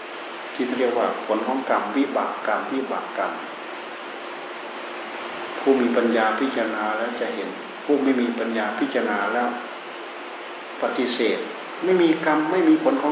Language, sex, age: Thai, male, 60-79